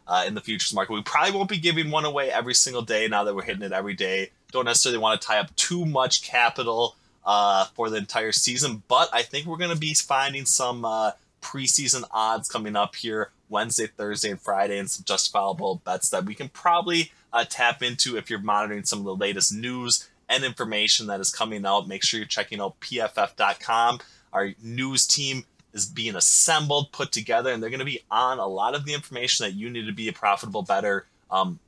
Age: 20-39